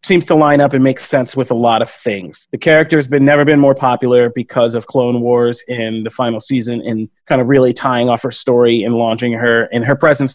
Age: 30-49